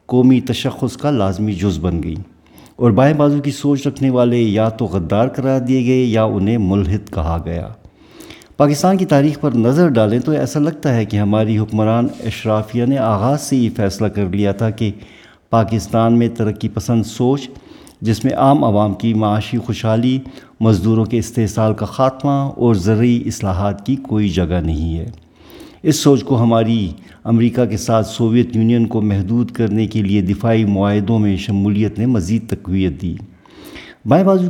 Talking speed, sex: 170 wpm, male